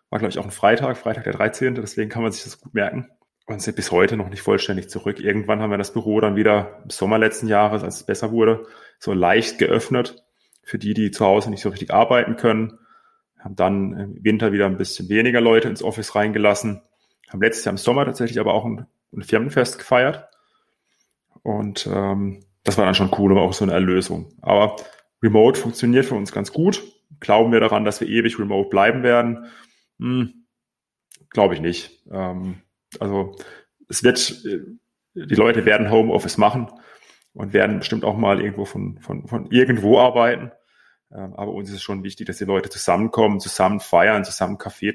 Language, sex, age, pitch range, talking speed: German, male, 30-49, 95-115 Hz, 190 wpm